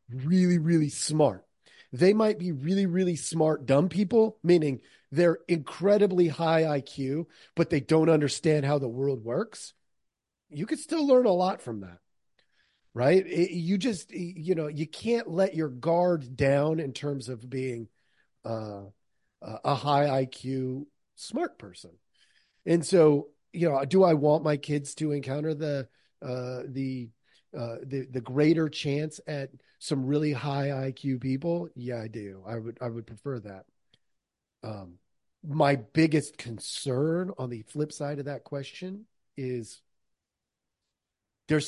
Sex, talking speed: male, 145 wpm